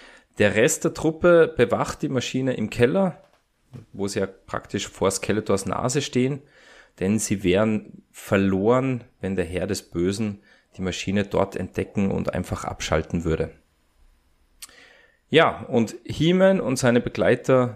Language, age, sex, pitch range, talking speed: German, 30-49, male, 100-125 Hz, 135 wpm